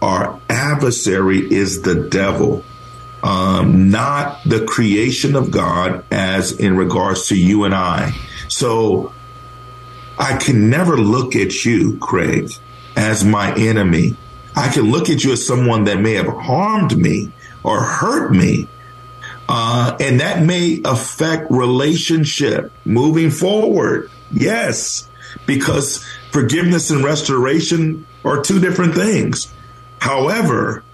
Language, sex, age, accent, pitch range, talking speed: English, male, 50-69, American, 115-140 Hz, 120 wpm